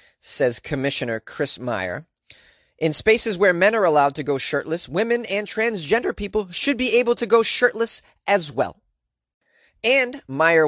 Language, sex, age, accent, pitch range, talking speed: English, male, 30-49, American, 125-190 Hz, 150 wpm